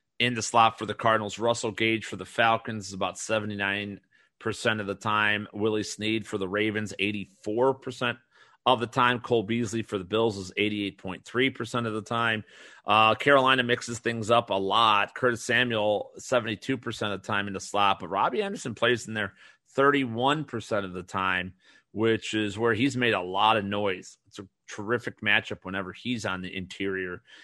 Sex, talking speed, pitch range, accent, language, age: male, 175 wpm, 100-120 Hz, American, English, 30-49